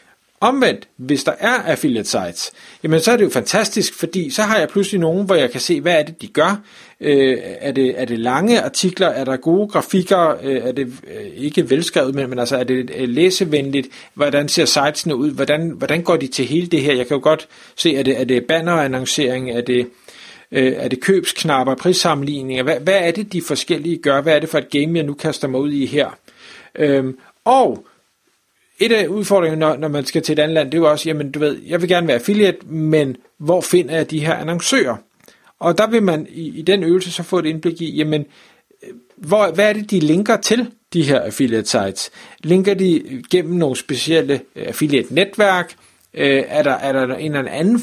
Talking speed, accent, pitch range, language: 210 wpm, native, 140-180 Hz, Danish